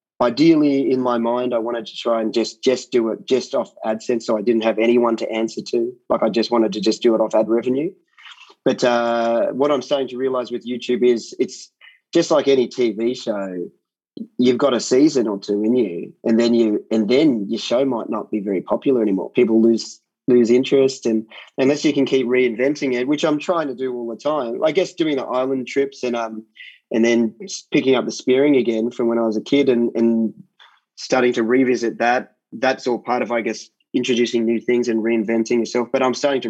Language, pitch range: English, 115-130 Hz